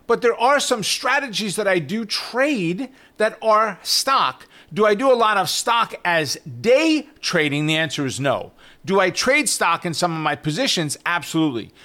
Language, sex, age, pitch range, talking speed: English, male, 40-59, 160-225 Hz, 180 wpm